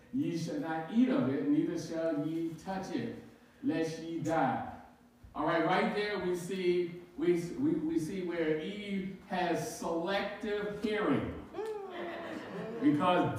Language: English